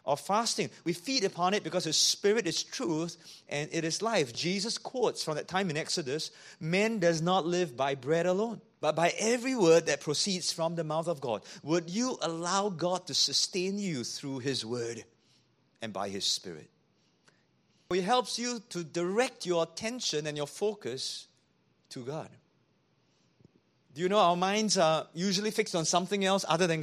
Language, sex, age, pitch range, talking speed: English, male, 30-49, 165-200 Hz, 175 wpm